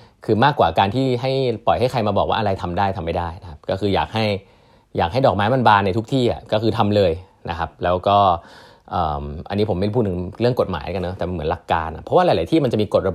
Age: 20-39